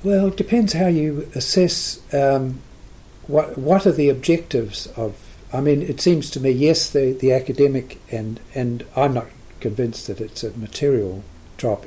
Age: 60-79